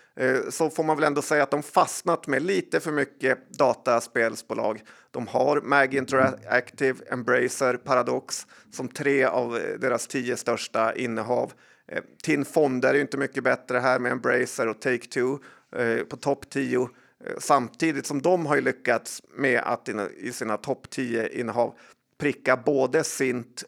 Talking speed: 145 wpm